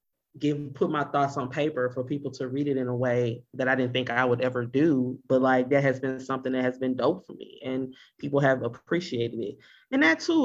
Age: 30-49